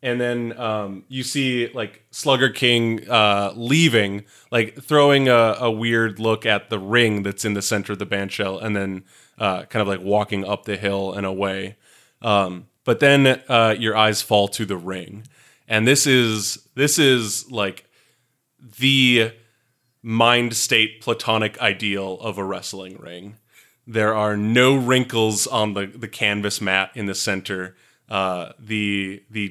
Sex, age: male, 20-39